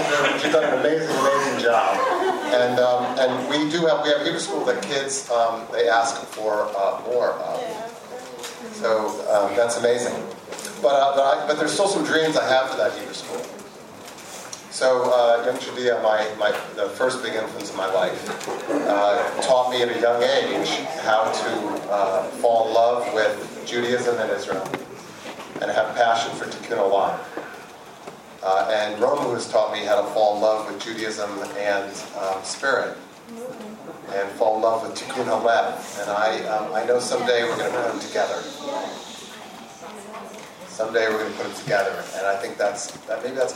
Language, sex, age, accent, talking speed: English, male, 40-59, American, 180 wpm